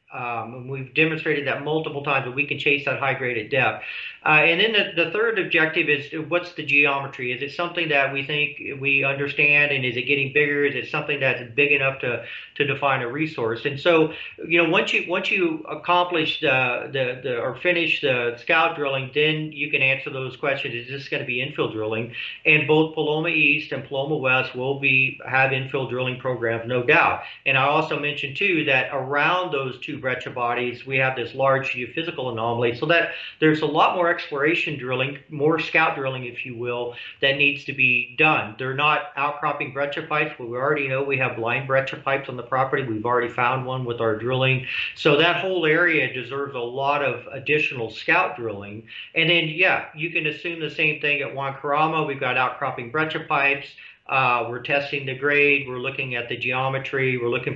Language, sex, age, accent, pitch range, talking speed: English, male, 40-59, American, 130-155 Hz, 205 wpm